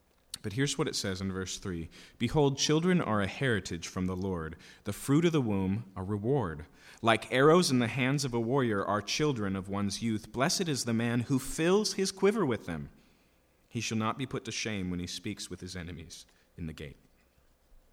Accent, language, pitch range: American, English, 85-125 Hz